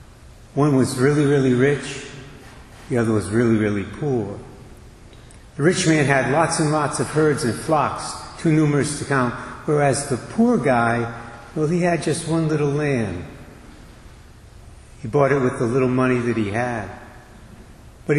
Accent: American